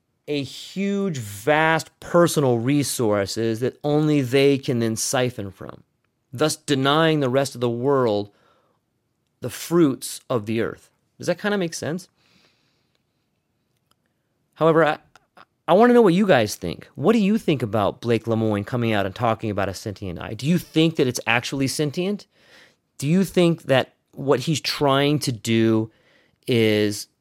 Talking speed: 160 wpm